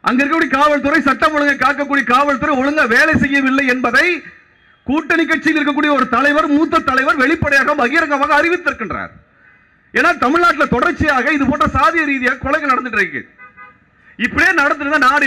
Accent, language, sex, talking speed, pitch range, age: native, Tamil, male, 135 wpm, 250-320 Hz, 40-59